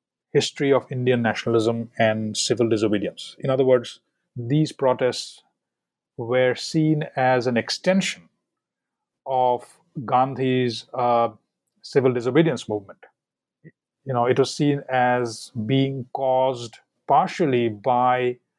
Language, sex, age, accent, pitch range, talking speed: English, male, 30-49, Indian, 120-150 Hz, 105 wpm